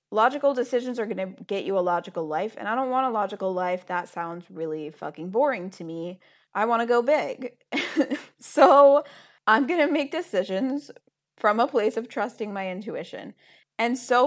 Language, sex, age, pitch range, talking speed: English, female, 20-39, 175-215 Hz, 185 wpm